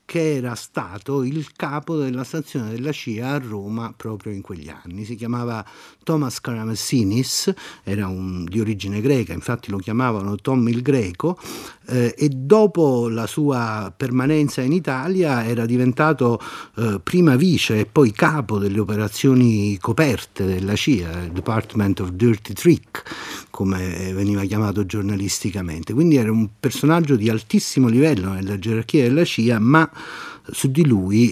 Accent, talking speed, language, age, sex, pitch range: native, 145 wpm, Italian, 50-69, male, 105-140 Hz